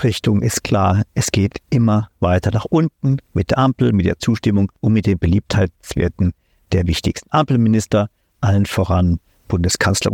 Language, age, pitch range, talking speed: German, 50-69, 100-130 Hz, 150 wpm